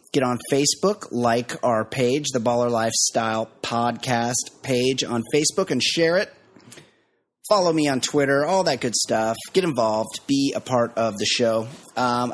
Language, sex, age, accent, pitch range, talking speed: English, male, 30-49, American, 115-145 Hz, 160 wpm